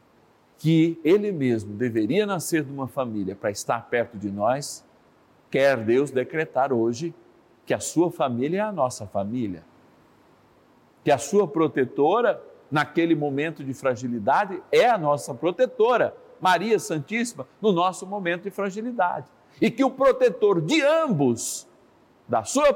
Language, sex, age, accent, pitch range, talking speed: Portuguese, male, 50-69, Brazilian, 120-185 Hz, 135 wpm